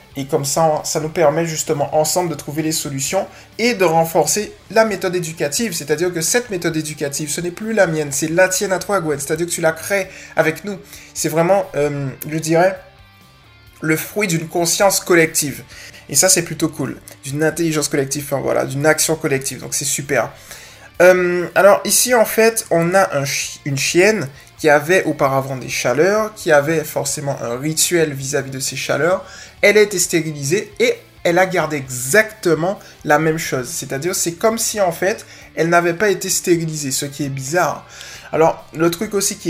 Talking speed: 190 wpm